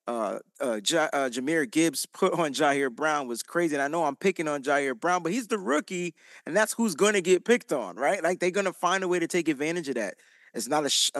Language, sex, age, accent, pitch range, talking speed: English, male, 30-49, American, 160-245 Hz, 265 wpm